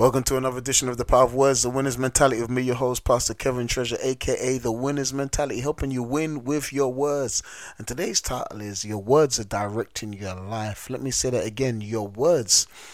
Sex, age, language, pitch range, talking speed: male, 30-49, English, 100-120 Hz, 215 wpm